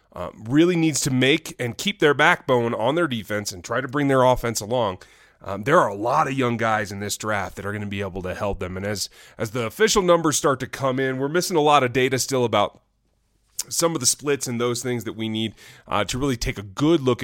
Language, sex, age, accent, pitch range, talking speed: English, male, 30-49, American, 105-135 Hz, 260 wpm